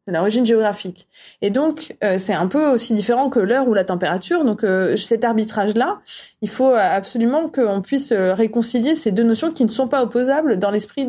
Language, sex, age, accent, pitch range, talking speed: French, female, 30-49, French, 185-240 Hz, 190 wpm